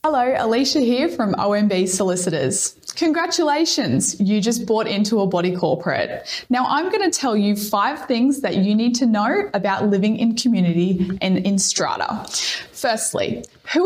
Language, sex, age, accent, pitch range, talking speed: English, female, 10-29, Australian, 190-265 Hz, 155 wpm